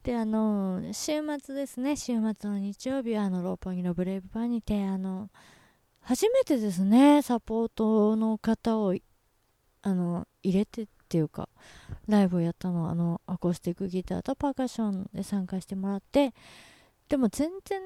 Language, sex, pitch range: Japanese, female, 190-265 Hz